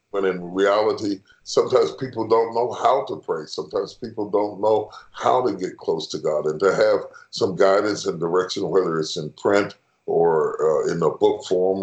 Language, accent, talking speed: English, American, 190 wpm